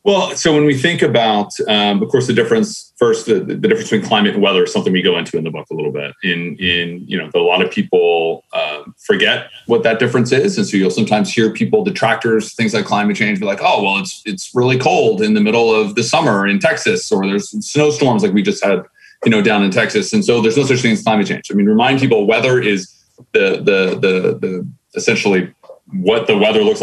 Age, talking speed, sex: 30-49, 240 wpm, male